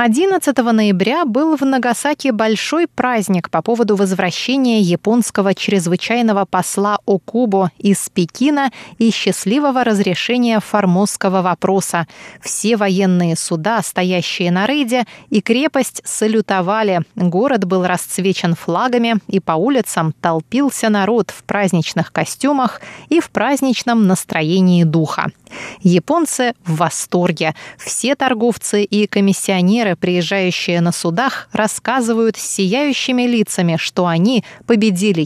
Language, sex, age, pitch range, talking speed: Russian, female, 20-39, 180-240 Hz, 110 wpm